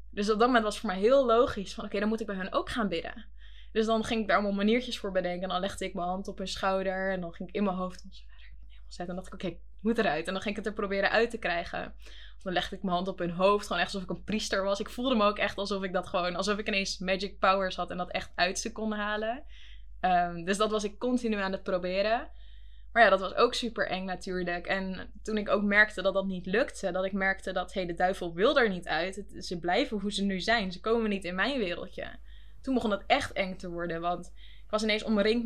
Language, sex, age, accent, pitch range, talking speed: Dutch, female, 20-39, Dutch, 185-210 Hz, 280 wpm